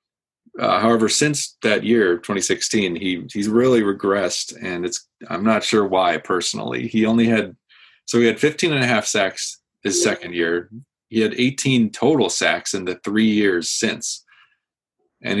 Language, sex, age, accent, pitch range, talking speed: English, male, 30-49, American, 90-115 Hz, 165 wpm